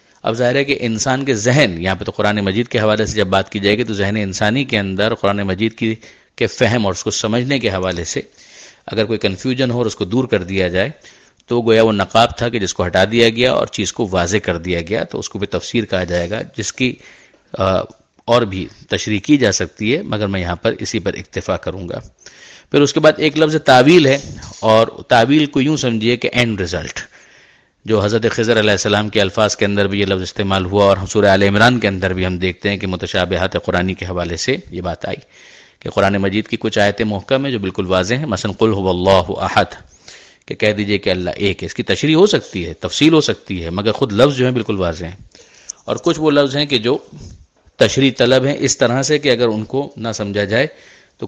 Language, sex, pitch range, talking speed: Urdu, male, 95-120 Hz, 240 wpm